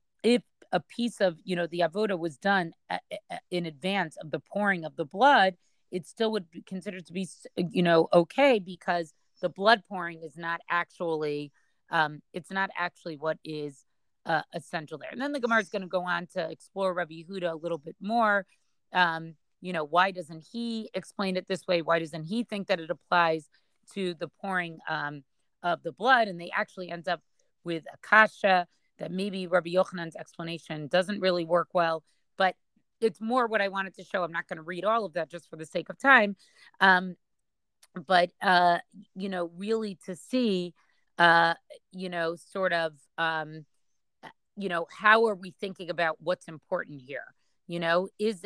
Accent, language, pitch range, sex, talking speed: American, English, 170-200 Hz, female, 190 wpm